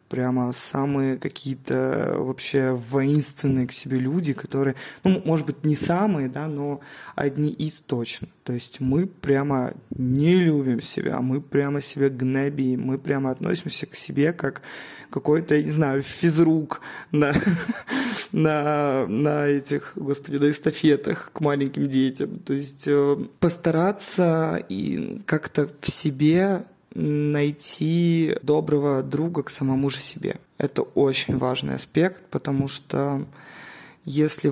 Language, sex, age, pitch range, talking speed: Russian, male, 20-39, 135-155 Hz, 120 wpm